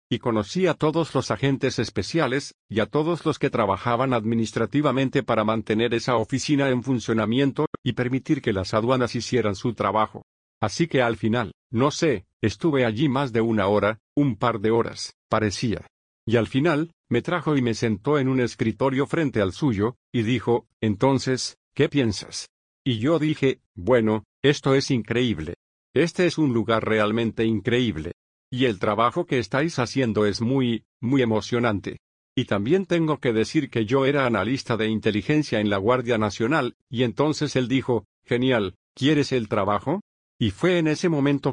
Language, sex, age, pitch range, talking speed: English, male, 50-69, 110-140 Hz, 165 wpm